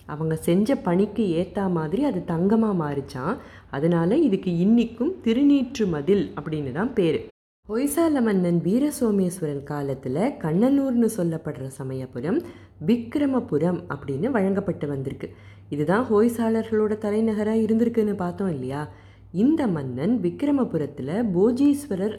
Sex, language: female, Tamil